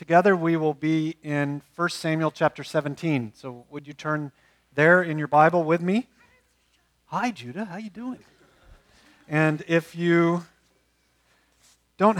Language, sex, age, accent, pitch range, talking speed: English, male, 40-59, American, 135-170 Hz, 140 wpm